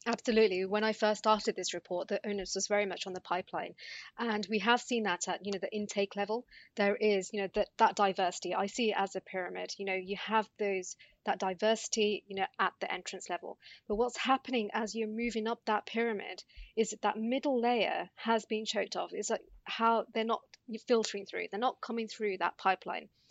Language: English